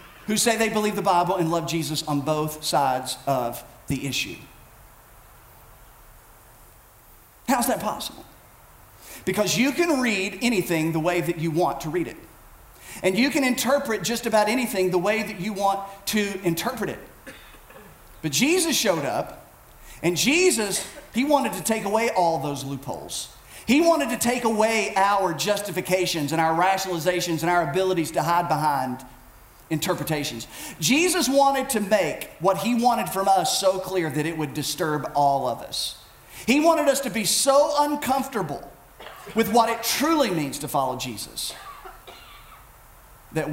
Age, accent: 40-59, American